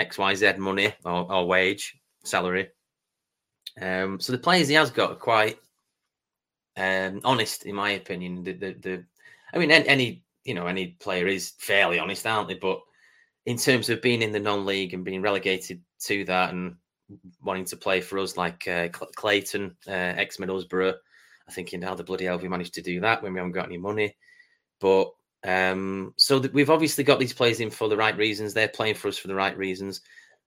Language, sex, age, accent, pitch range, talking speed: English, male, 30-49, British, 95-120 Hz, 195 wpm